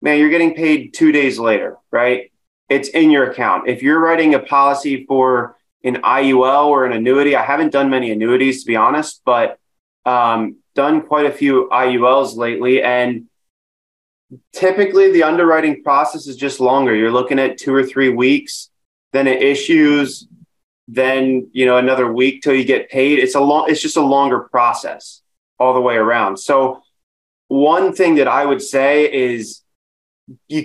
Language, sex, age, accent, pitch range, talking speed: English, male, 20-39, American, 125-145 Hz, 170 wpm